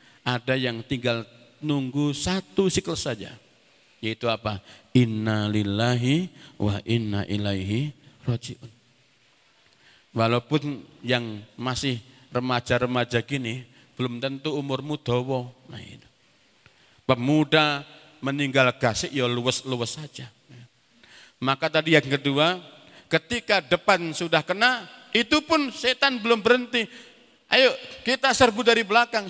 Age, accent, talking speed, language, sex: 50-69, native, 100 wpm, Indonesian, male